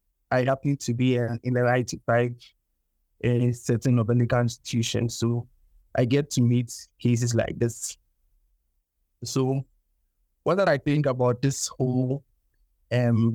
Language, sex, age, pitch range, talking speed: English, male, 20-39, 115-135 Hz, 140 wpm